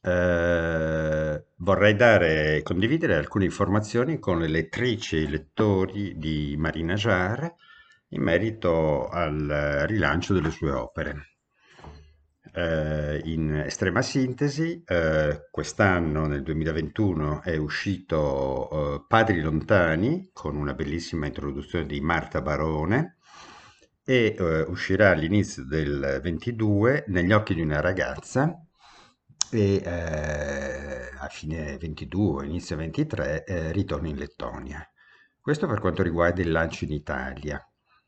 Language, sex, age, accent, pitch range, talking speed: Italian, male, 50-69, native, 75-100 Hz, 115 wpm